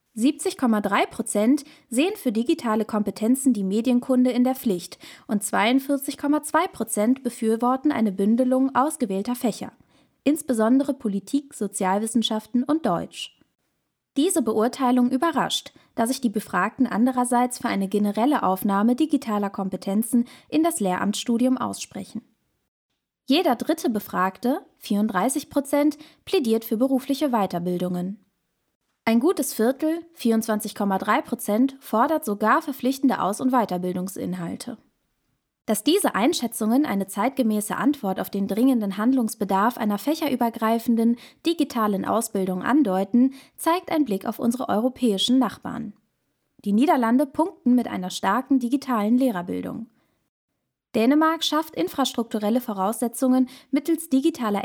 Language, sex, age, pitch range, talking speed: German, female, 20-39, 210-270 Hz, 105 wpm